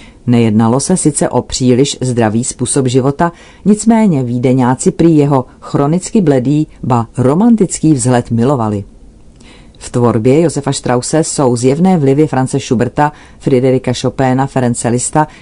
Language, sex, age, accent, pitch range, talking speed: Czech, female, 40-59, native, 125-150 Hz, 115 wpm